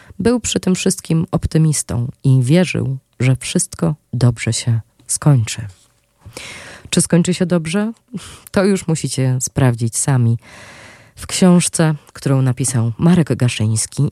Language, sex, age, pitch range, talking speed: Polish, female, 20-39, 125-165 Hz, 115 wpm